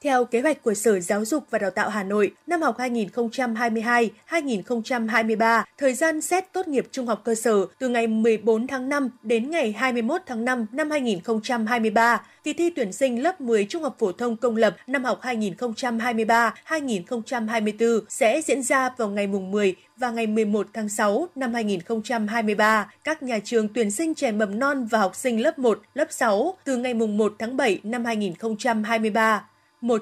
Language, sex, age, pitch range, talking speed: Vietnamese, female, 20-39, 220-260 Hz, 180 wpm